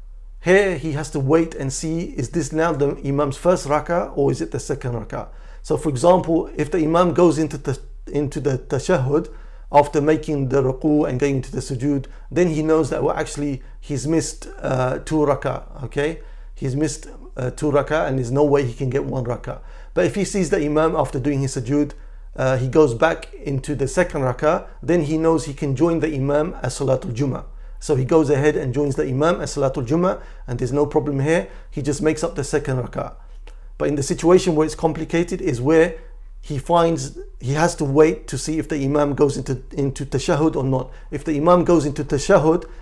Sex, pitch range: male, 135-160 Hz